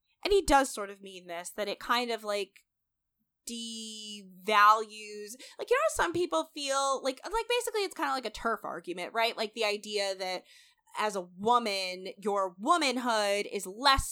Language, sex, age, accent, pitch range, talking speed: English, female, 20-39, American, 200-270 Hz, 175 wpm